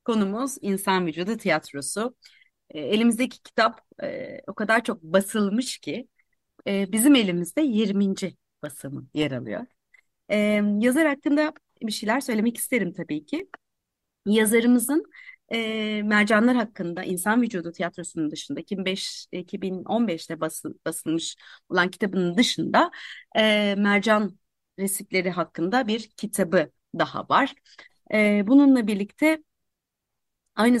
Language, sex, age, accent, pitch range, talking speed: Turkish, female, 30-49, native, 180-250 Hz, 105 wpm